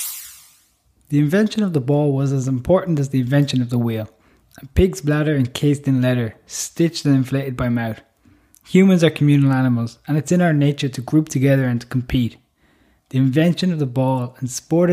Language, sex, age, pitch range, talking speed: English, male, 20-39, 125-150 Hz, 190 wpm